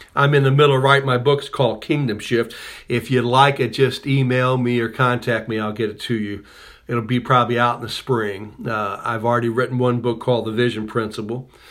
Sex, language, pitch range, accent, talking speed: male, English, 110-135 Hz, American, 220 wpm